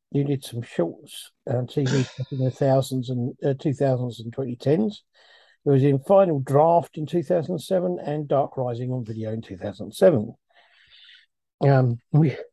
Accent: British